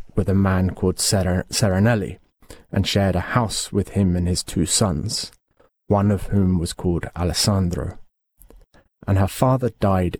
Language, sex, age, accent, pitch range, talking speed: English, male, 30-49, British, 90-115 Hz, 145 wpm